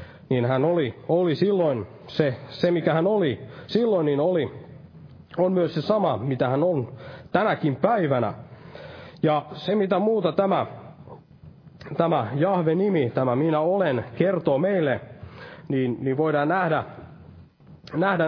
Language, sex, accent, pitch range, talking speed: Finnish, male, native, 135-175 Hz, 130 wpm